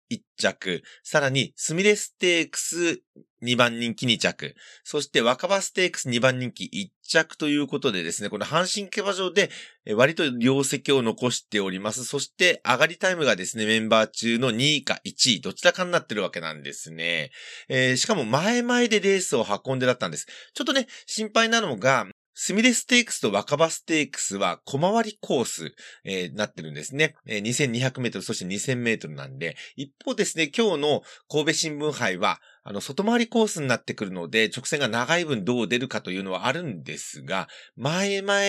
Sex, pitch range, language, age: male, 115-180 Hz, Japanese, 30-49